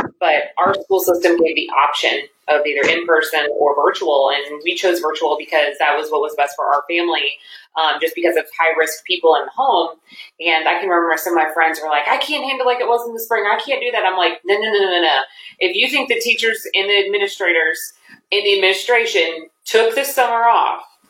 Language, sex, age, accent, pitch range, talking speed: English, female, 30-49, American, 170-265 Hz, 225 wpm